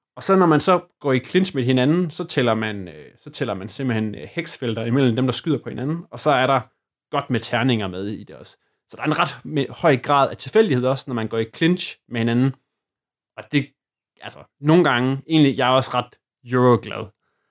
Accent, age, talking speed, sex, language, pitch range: native, 20-39, 225 wpm, male, Danish, 115-145 Hz